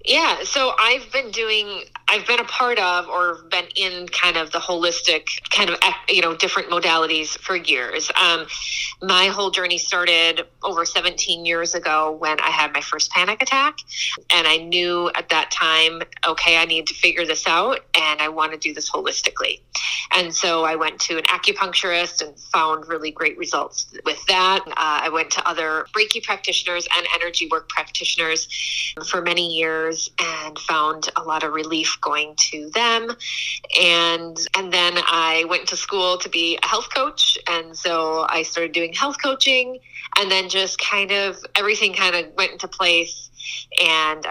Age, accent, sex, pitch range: 30-49, American, female, 160-190 Hz